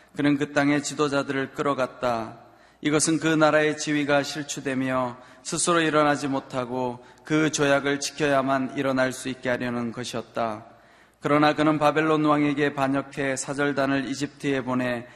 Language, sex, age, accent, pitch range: Korean, male, 20-39, native, 130-145 Hz